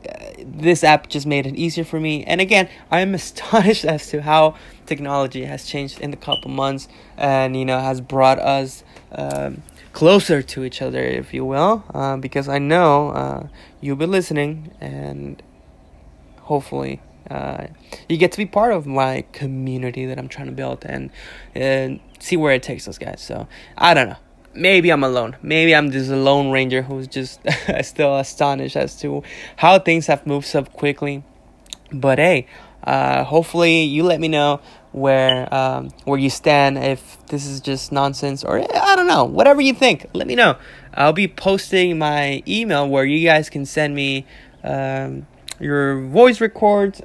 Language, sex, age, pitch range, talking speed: English, male, 20-39, 130-160 Hz, 175 wpm